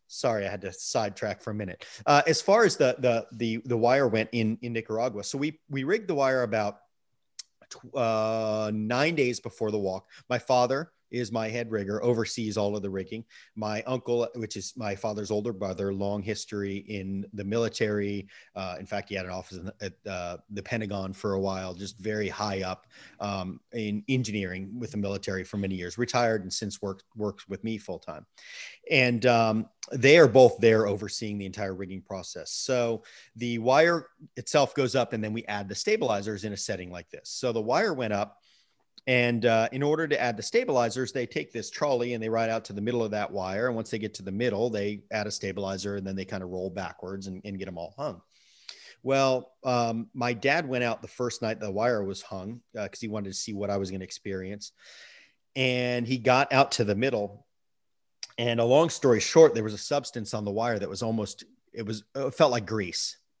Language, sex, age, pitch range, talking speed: English, male, 30-49, 100-120 Hz, 215 wpm